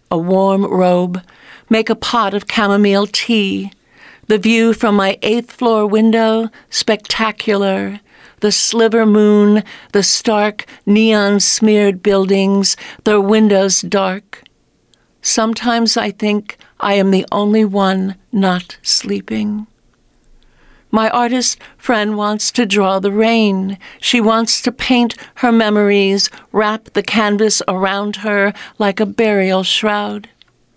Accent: American